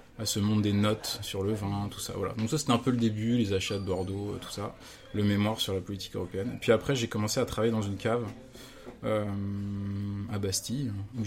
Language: French